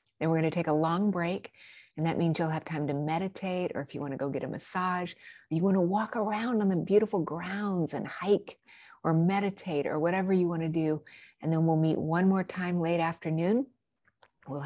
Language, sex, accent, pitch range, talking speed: English, female, American, 160-205 Hz, 220 wpm